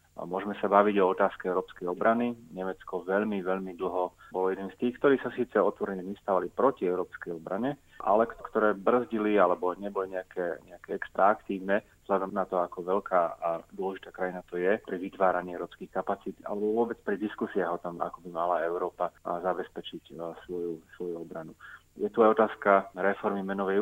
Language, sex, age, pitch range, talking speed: Slovak, male, 30-49, 90-105 Hz, 165 wpm